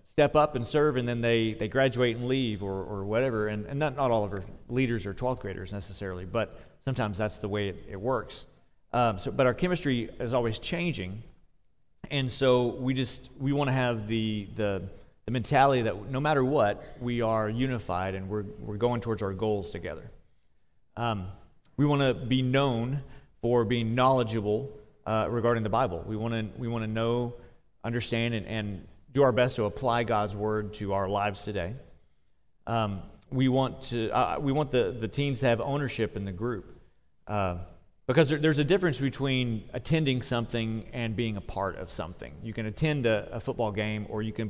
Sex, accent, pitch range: male, American, 105-130 Hz